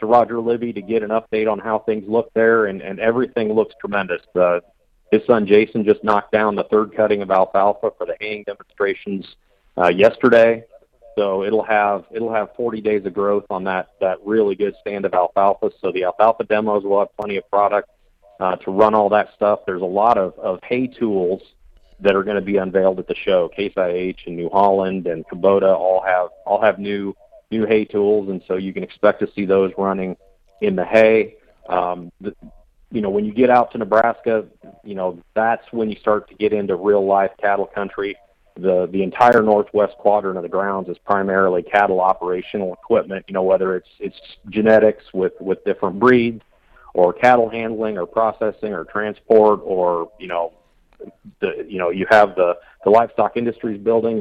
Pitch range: 95-110 Hz